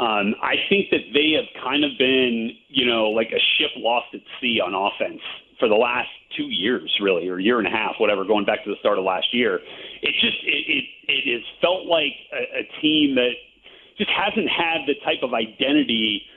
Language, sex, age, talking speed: English, male, 40-59, 215 wpm